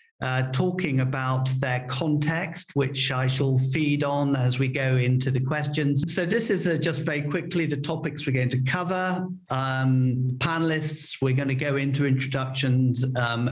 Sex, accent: male, British